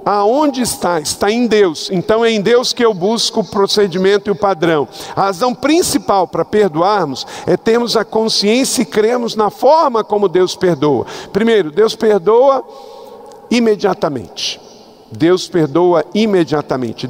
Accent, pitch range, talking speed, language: Brazilian, 175-220 Hz, 140 wpm, Portuguese